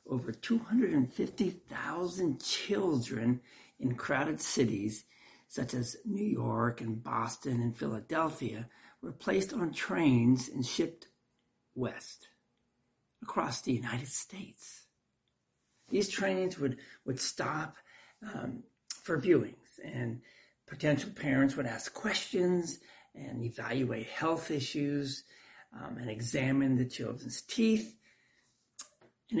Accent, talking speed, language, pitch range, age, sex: American, 100 wpm, English, 120-150 Hz, 60-79, male